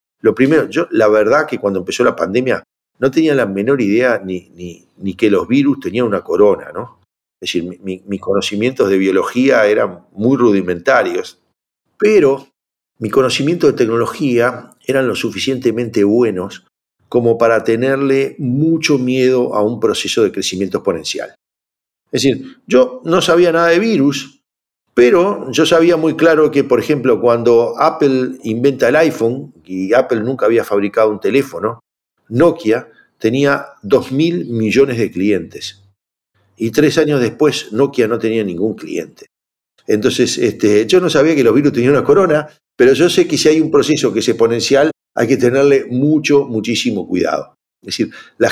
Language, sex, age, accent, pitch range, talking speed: Spanish, male, 50-69, Argentinian, 115-155 Hz, 160 wpm